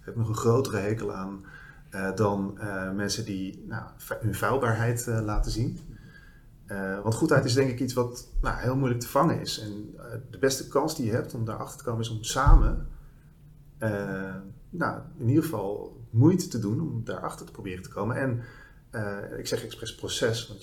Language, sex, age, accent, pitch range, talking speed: Dutch, male, 40-59, Dutch, 100-130 Hz, 205 wpm